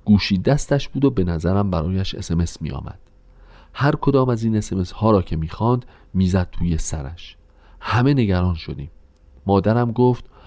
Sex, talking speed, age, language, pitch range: male, 155 wpm, 40-59, Persian, 85-110 Hz